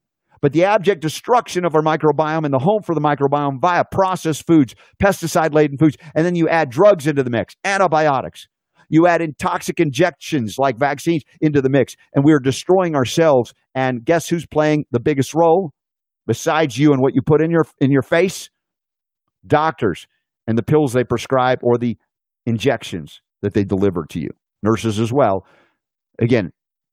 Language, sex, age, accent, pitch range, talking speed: English, male, 50-69, American, 120-155 Hz, 175 wpm